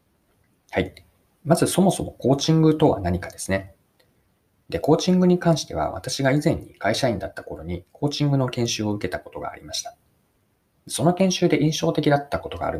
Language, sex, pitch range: Japanese, male, 95-150 Hz